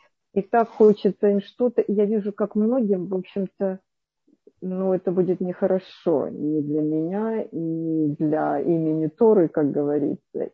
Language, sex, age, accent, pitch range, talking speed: Russian, female, 50-69, native, 170-205 Hz, 140 wpm